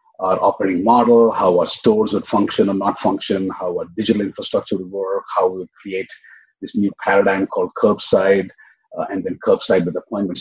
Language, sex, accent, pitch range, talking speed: English, male, Indian, 100-130 Hz, 185 wpm